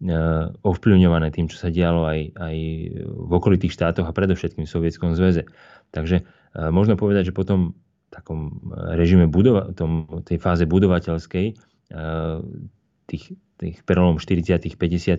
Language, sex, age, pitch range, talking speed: Slovak, male, 20-39, 80-95 Hz, 125 wpm